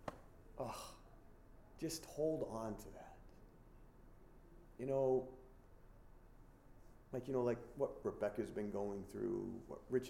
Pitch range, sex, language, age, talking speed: 100-125 Hz, male, English, 40-59, 115 wpm